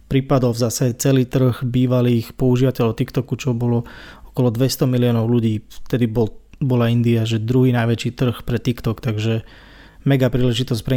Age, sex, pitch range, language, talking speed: 20-39, male, 115-135 Hz, Slovak, 150 wpm